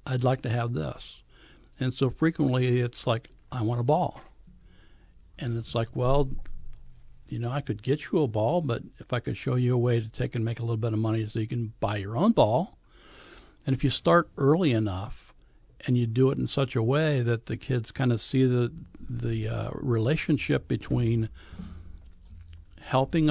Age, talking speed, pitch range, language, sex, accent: 60-79, 195 wpm, 110-130 Hz, English, male, American